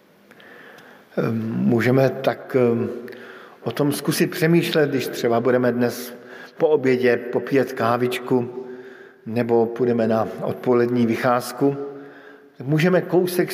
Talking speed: 95 wpm